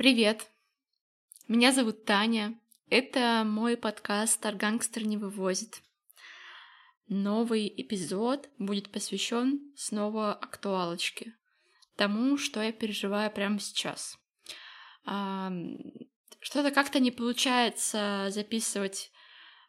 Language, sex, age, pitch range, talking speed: Russian, female, 20-39, 205-255 Hz, 80 wpm